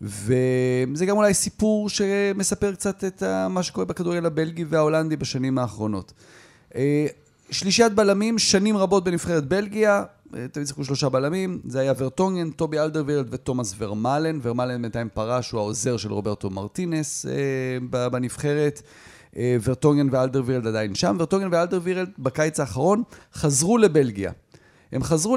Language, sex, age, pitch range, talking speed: Hebrew, male, 30-49, 125-185 Hz, 125 wpm